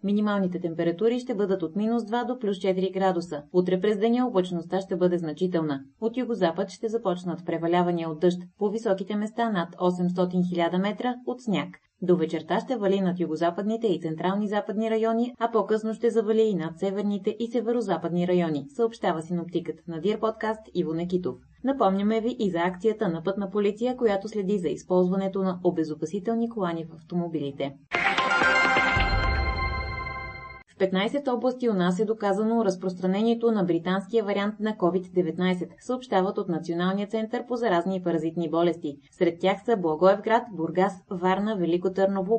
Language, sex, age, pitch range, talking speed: Bulgarian, female, 30-49, 170-215 Hz, 155 wpm